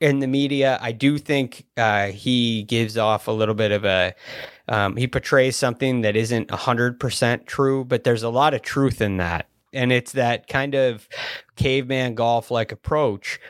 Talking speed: 180 wpm